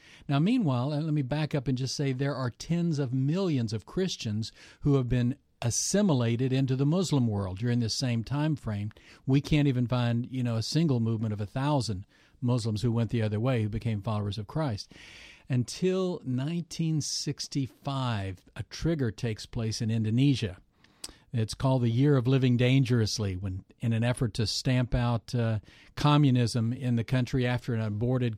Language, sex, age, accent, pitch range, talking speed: English, male, 50-69, American, 115-145 Hz, 175 wpm